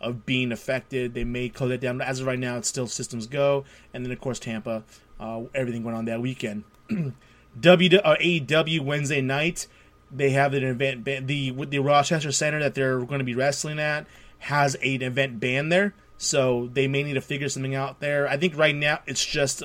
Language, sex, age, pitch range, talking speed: English, male, 20-39, 125-145 Hz, 210 wpm